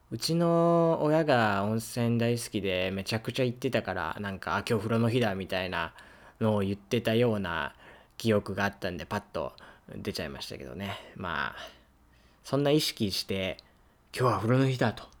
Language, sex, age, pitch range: Japanese, male, 20-39, 95-125 Hz